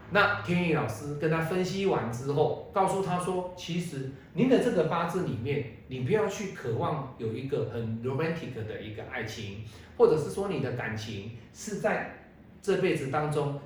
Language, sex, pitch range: Chinese, male, 125-180 Hz